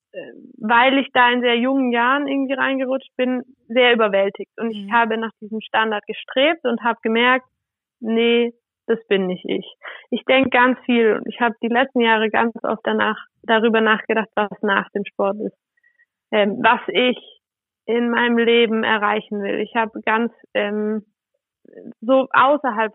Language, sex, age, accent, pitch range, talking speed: German, female, 20-39, German, 220-255 Hz, 160 wpm